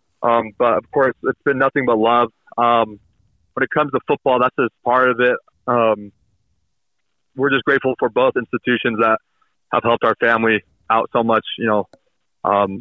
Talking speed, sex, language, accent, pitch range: 180 wpm, male, English, American, 110-130 Hz